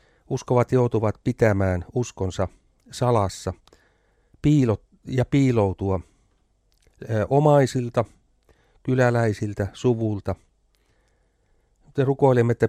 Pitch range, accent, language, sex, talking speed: 95-130 Hz, native, Finnish, male, 55 wpm